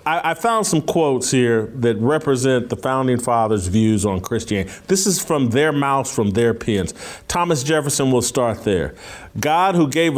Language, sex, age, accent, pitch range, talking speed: English, male, 50-69, American, 120-160 Hz, 170 wpm